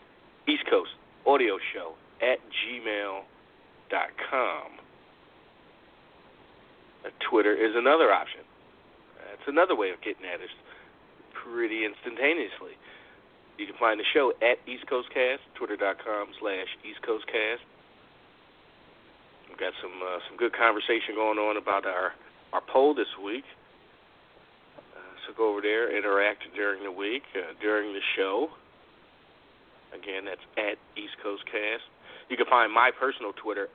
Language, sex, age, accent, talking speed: English, male, 40-59, American, 130 wpm